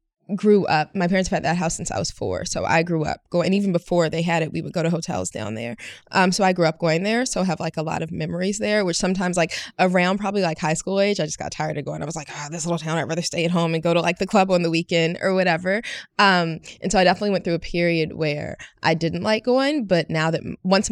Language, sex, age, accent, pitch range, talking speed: English, female, 20-39, American, 165-200 Hz, 295 wpm